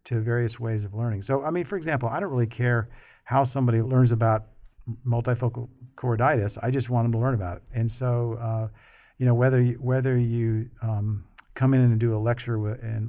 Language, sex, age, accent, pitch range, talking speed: English, male, 50-69, American, 110-125 Hz, 205 wpm